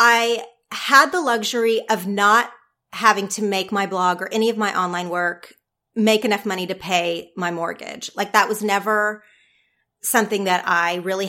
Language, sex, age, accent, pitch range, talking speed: English, female, 30-49, American, 190-245 Hz, 170 wpm